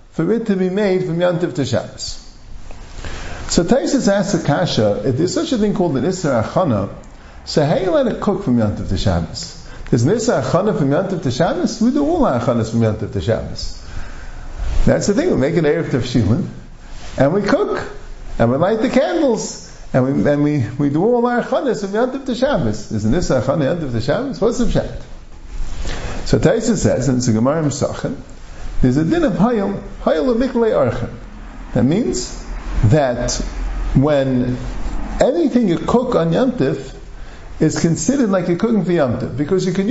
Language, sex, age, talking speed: English, male, 50-69, 175 wpm